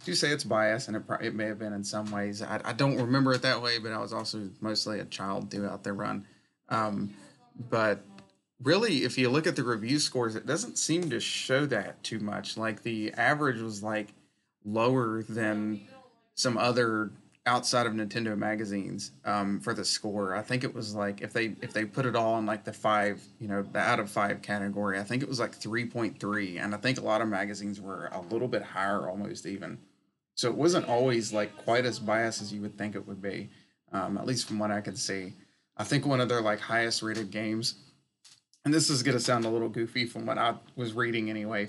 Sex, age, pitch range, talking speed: male, 30-49, 105-125 Hz, 225 wpm